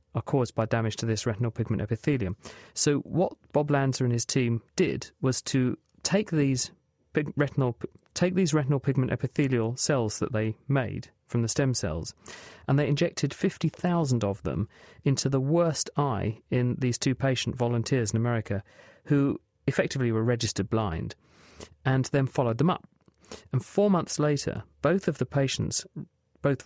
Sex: male